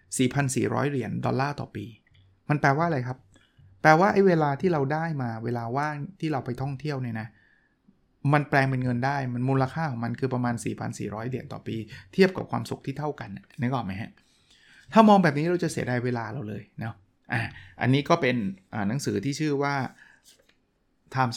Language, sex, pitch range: Thai, male, 115-145 Hz